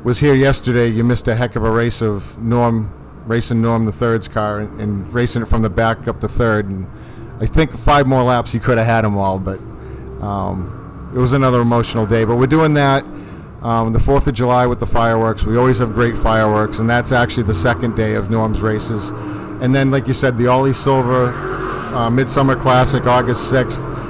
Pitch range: 115-135 Hz